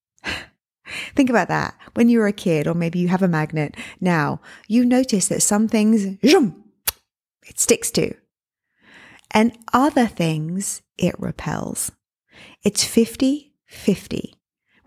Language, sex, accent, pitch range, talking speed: English, female, British, 170-230 Hz, 120 wpm